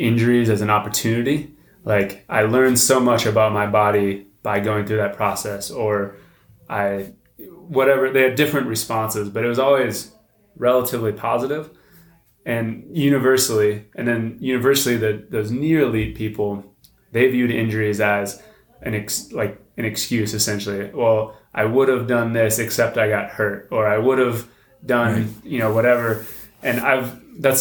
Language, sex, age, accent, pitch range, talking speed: English, male, 20-39, American, 110-125 Hz, 155 wpm